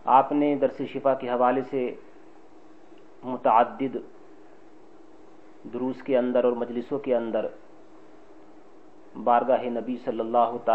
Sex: male